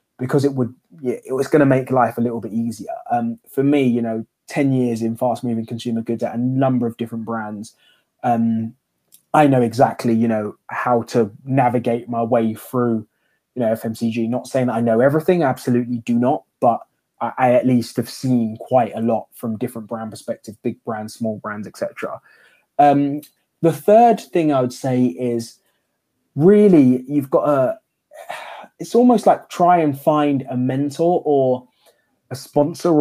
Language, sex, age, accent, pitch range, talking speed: English, male, 20-39, British, 120-145 Hz, 175 wpm